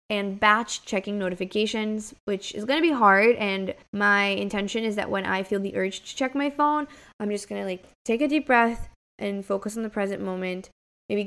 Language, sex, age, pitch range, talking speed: English, female, 10-29, 185-220 Hz, 215 wpm